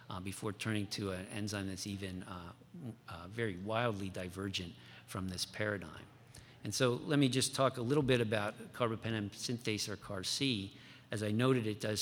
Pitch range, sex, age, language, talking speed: 100-125 Hz, male, 50-69, English, 175 wpm